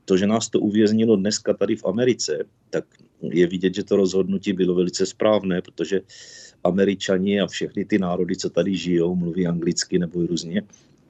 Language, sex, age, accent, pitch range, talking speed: Czech, male, 50-69, native, 85-95 Hz, 170 wpm